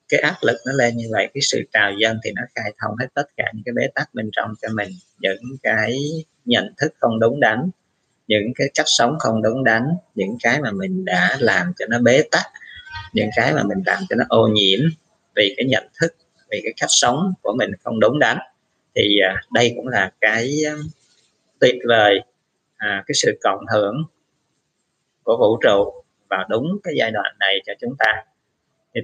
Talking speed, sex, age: 200 wpm, male, 20-39